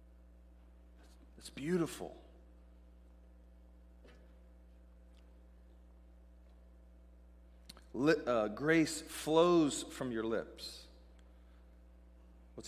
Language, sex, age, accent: English, male, 40-59, American